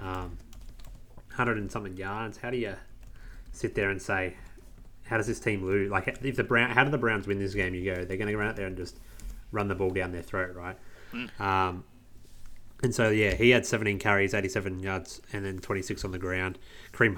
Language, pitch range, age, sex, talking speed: English, 95-105 Hz, 30-49, male, 215 wpm